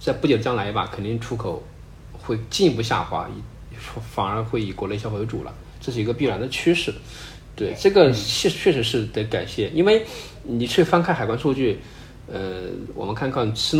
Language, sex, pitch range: Chinese, male, 100-130 Hz